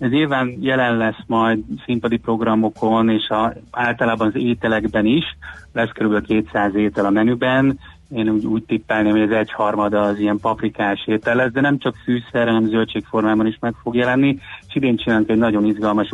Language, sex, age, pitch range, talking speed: Hungarian, male, 30-49, 105-115 Hz, 165 wpm